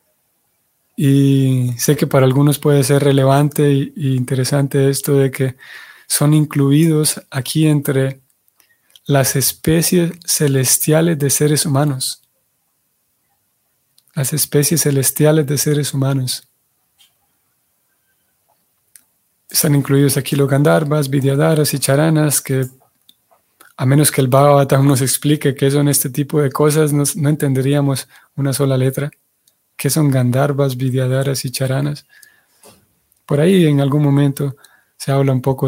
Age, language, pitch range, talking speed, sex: 30-49, Spanish, 135-150 Hz, 120 wpm, male